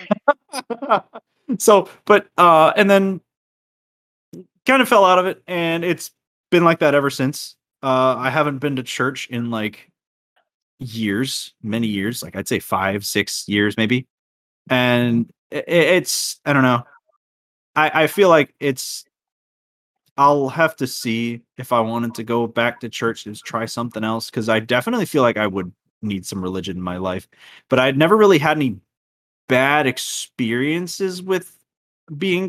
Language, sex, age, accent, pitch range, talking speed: English, male, 20-39, American, 110-150 Hz, 155 wpm